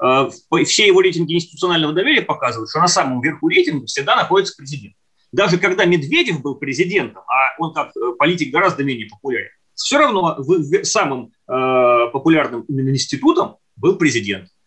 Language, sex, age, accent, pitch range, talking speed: Russian, male, 30-49, native, 145-205 Hz, 135 wpm